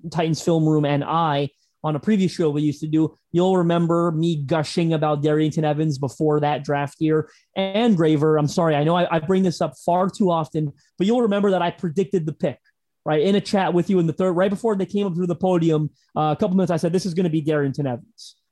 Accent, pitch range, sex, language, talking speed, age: American, 155-190 Hz, male, English, 250 wpm, 30-49